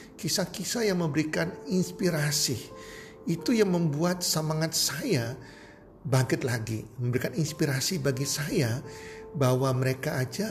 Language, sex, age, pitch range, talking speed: Indonesian, male, 50-69, 120-160 Hz, 105 wpm